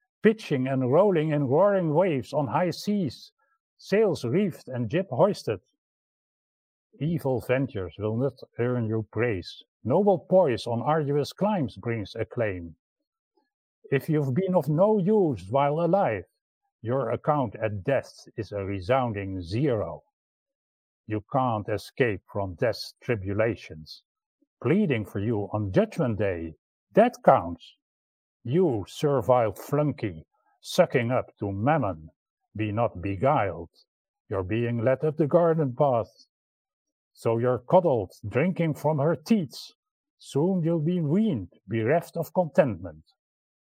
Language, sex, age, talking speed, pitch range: English, male, 50-69, 120 wpm, 115-175 Hz